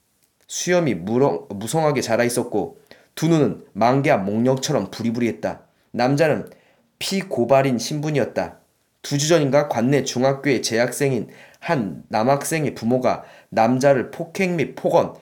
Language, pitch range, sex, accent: Korean, 120-150 Hz, male, native